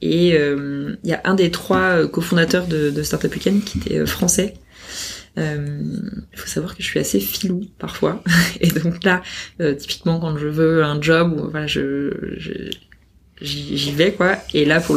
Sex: female